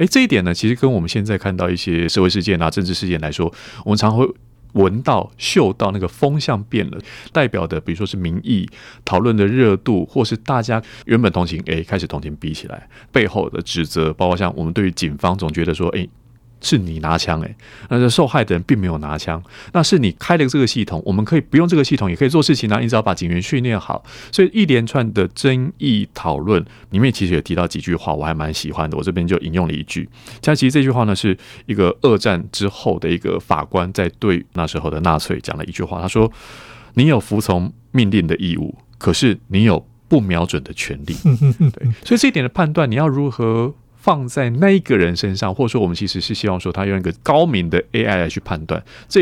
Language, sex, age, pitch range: Chinese, male, 30-49, 90-125 Hz